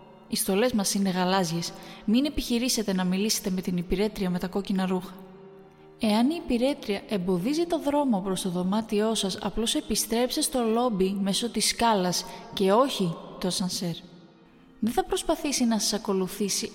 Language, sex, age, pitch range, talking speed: Greek, female, 20-39, 190-230 Hz, 155 wpm